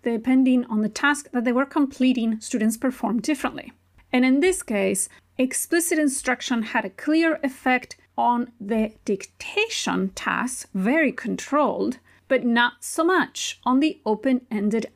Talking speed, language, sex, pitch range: 135 wpm, English, female, 220-275 Hz